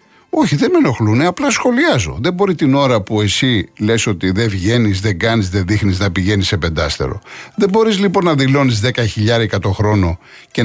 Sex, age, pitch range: male, 60-79, 110-180 Hz